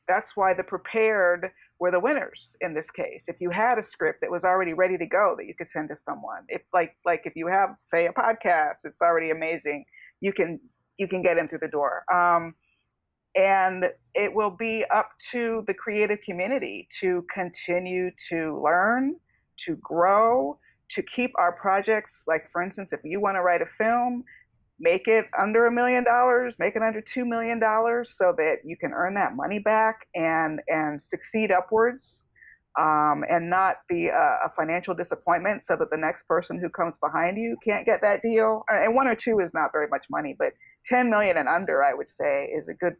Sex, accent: female, American